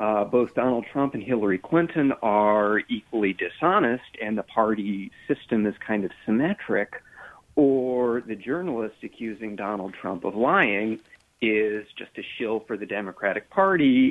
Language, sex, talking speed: English, male, 145 wpm